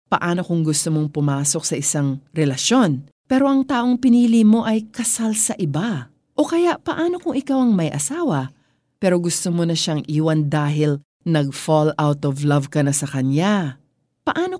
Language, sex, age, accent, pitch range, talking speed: Filipino, female, 40-59, native, 150-225 Hz, 170 wpm